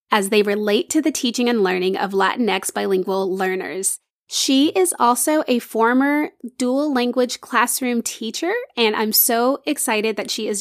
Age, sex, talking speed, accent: 20-39, female, 160 wpm, American